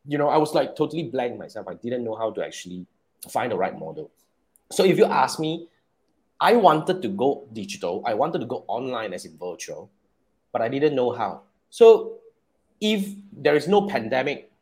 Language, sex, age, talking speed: English, male, 30-49, 195 wpm